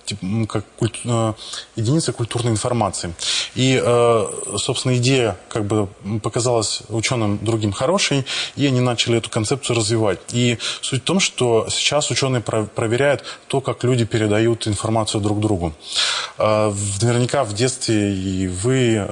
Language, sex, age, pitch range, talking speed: Russian, male, 20-39, 110-125 Hz, 125 wpm